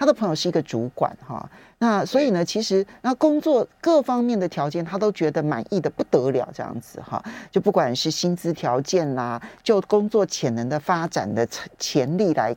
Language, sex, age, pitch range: Chinese, male, 40-59, 140-215 Hz